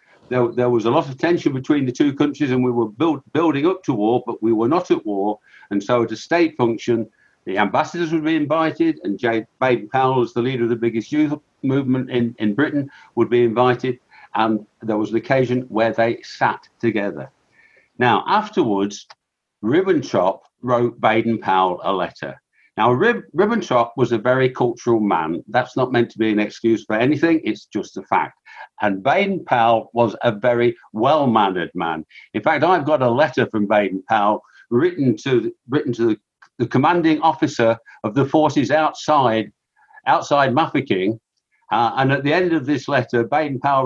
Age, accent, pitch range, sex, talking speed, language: 60-79, British, 115-150 Hz, male, 165 wpm, English